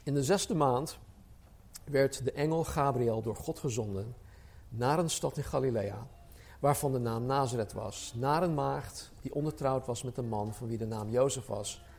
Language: Dutch